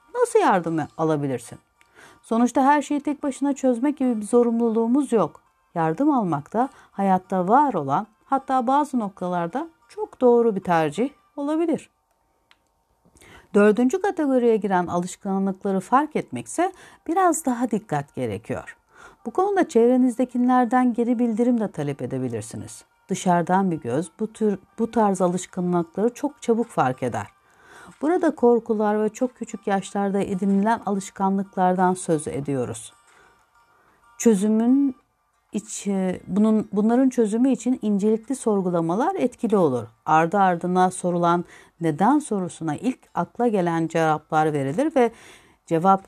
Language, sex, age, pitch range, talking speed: Turkish, female, 60-79, 175-250 Hz, 115 wpm